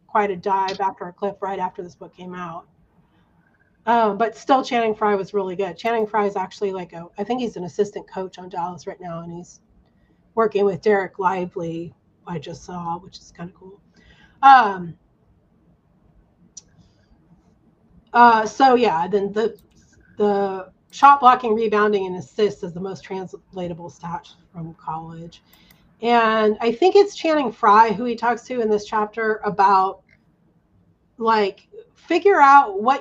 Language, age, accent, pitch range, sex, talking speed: English, 30-49, American, 190-230 Hz, female, 160 wpm